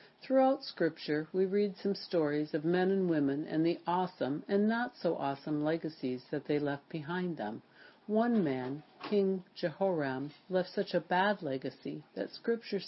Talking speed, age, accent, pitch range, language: 150 wpm, 60-79, American, 145-195 Hz, English